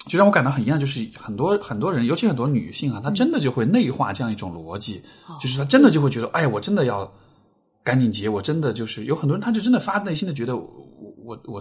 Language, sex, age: Chinese, male, 20-39